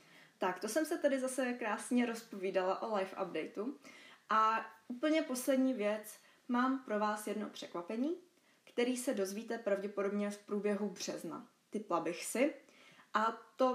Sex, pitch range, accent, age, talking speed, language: female, 195-230 Hz, native, 20-39, 140 wpm, Czech